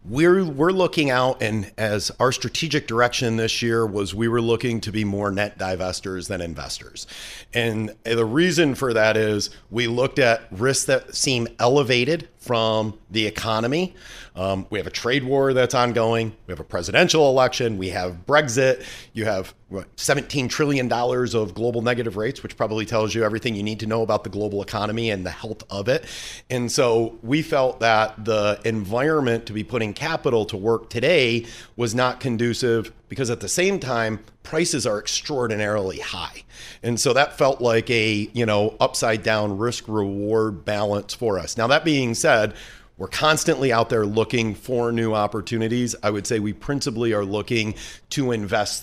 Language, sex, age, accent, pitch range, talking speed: English, male, 40-59, American, 105-125 Hz, 175 wpm